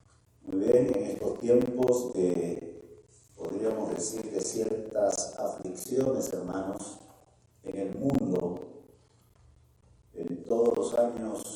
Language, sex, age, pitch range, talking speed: English, male, 40-59, 115-155 Hz, 100 wpm